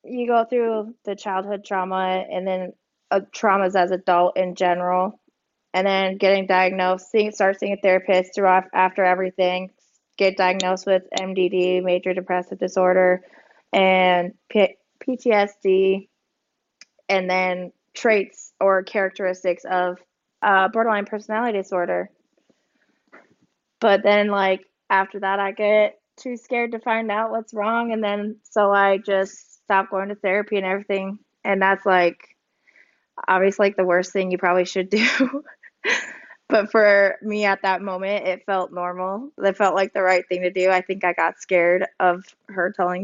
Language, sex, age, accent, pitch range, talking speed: English, female, 20-39, American, 185-210 Hz, 150 wpm